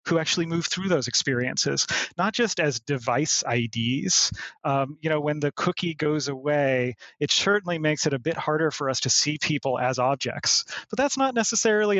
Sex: male